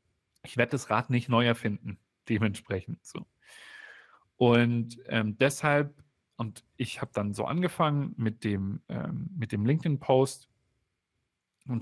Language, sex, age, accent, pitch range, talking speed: German, male, 40-59, German, 110-130 Hz, 125 wpm